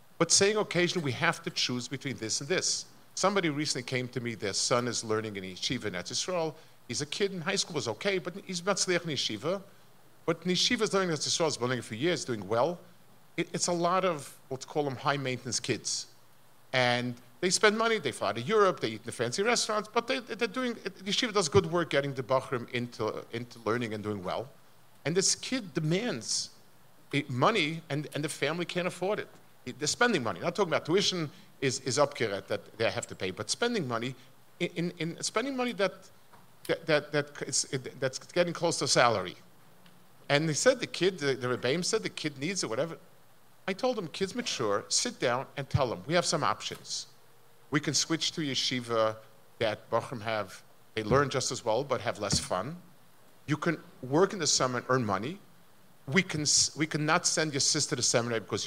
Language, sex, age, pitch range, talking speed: English, male, 50-69, 125-180 Hz, 210 wpm